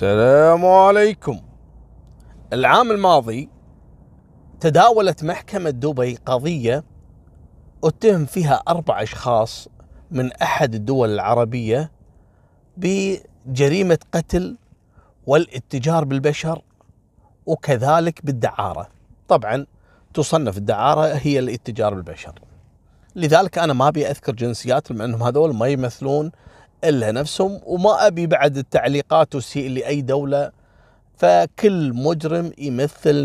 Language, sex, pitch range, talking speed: Arabic, male, 120-165 Hz, 90 wpm